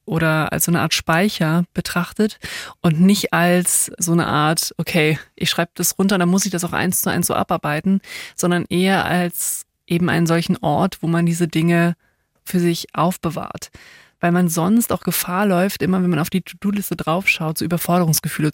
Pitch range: 170-195 Hz